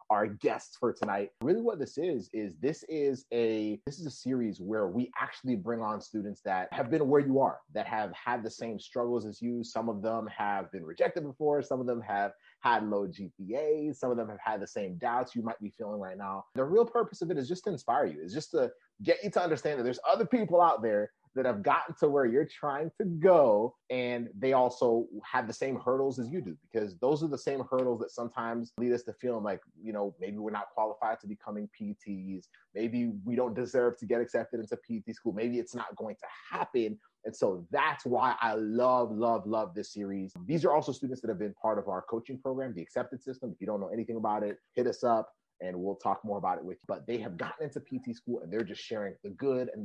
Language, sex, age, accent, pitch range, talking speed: English, male, 30-49, American, 110-135 Hz, 240 wpm